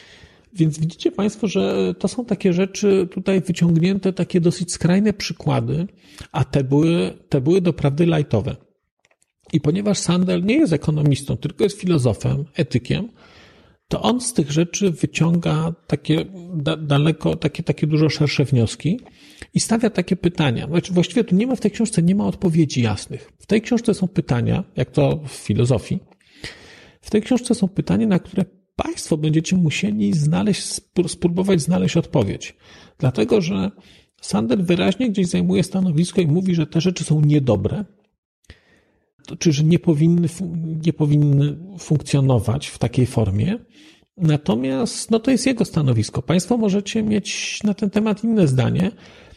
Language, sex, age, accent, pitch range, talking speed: Polish, male, 40-59, native, 155-195 Hz, 150 wpm